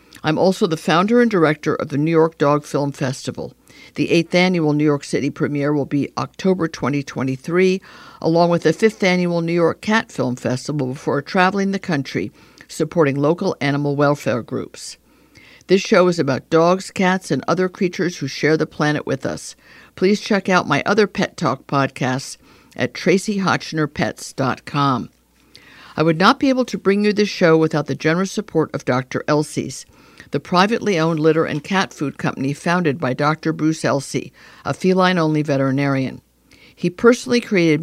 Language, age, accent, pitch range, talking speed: English, 60-79, American, 140-180 Hz, 165 wpm